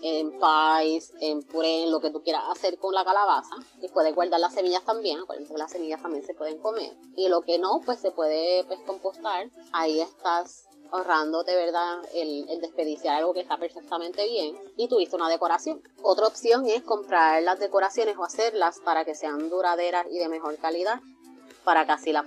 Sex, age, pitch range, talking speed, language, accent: female, 20-39, 160-195 Hz, 190 wpm, Spanish, American